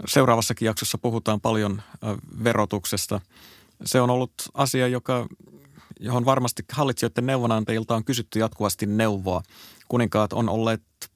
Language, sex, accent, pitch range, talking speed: Finnish, male, native, 95-115 Hz, 115 wpm